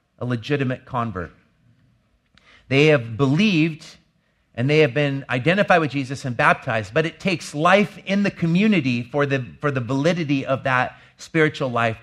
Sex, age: male, 40-59